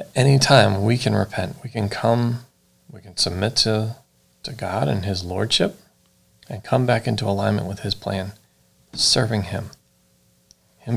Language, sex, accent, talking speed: English, male, American, 155 wpm